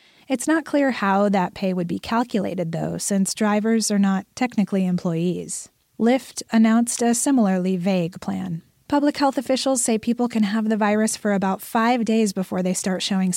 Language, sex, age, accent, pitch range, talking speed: English, female, 30-49, American, 195-245 Hz, 175 wpm